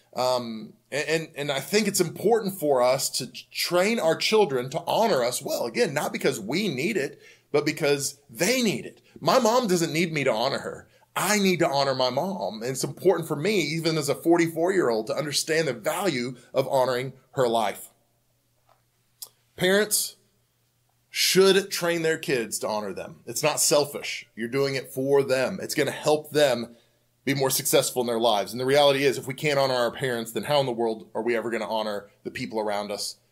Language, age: English, 30-49